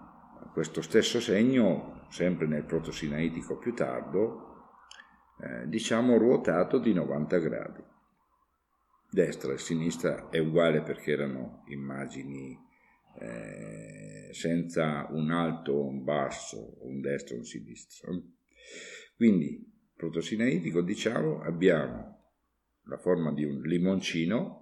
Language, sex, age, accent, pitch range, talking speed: Italian, male, 50-69, native, 75-90 Hz, 105 wpm